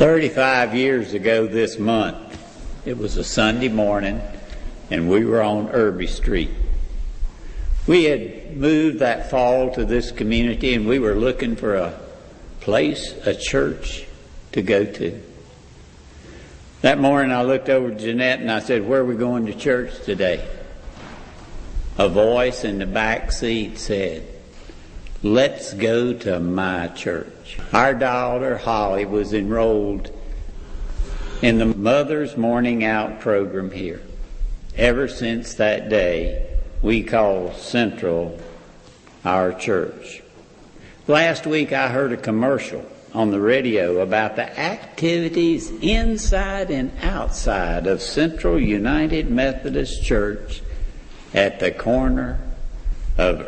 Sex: male